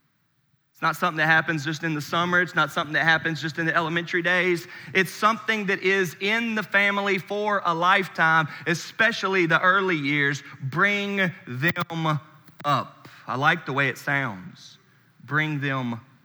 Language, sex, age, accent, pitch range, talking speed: English, male, 30-49, American, 140-200 Hz, 160 wpm